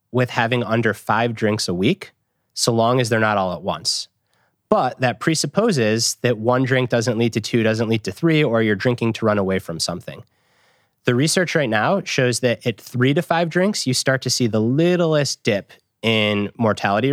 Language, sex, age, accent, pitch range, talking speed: English, male, 30-49, American, 115-155 Hz, 200 wpm